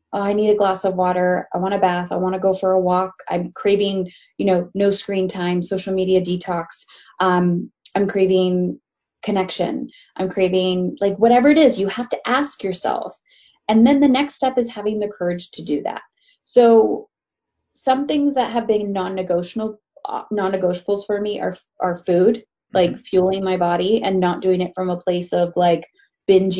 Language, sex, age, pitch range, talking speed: English, female, 20-39, 180-230 Hz, 190 wpm